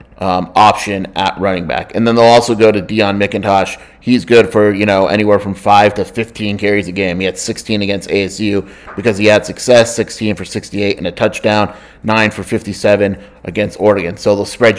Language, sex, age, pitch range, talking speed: English, male, 30-49, 100-110 Hz, 200 wpm